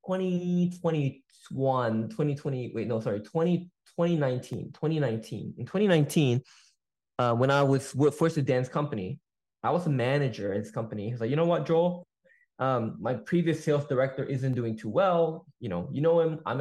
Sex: male